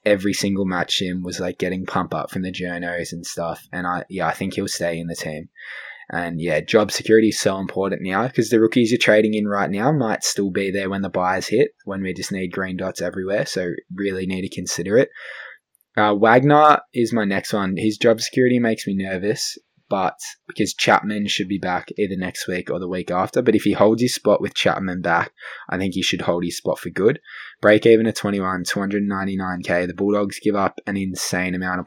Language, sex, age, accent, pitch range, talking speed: English, male, 20-39, Australian, 90-105 Hz, 220 wpm